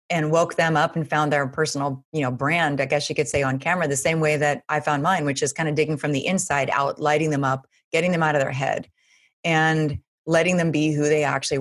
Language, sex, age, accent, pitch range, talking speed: English, female, 30-49, American, 145-170 Hz, 260 wpm